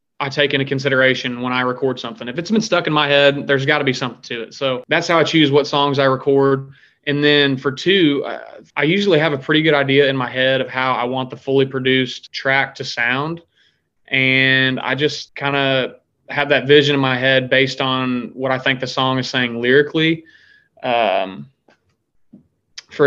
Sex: male